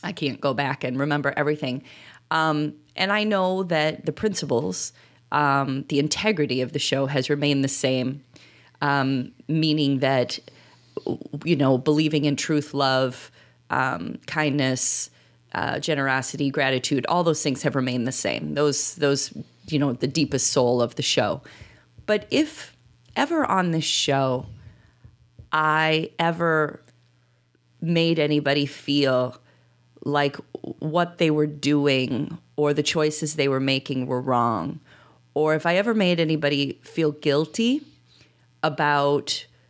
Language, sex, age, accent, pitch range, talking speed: English, female, 30-49, American, 130-155 Hz, 135 wpm